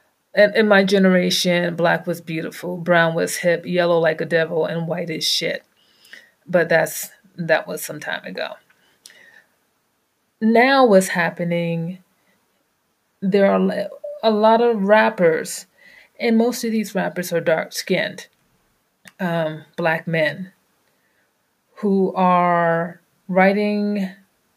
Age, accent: 30-49, American